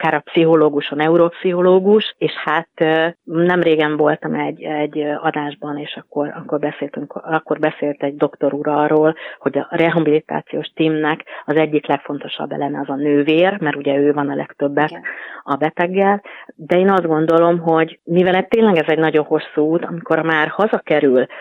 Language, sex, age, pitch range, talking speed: Hungarian, female, 30-49, 145-170 Hz, 155 wpm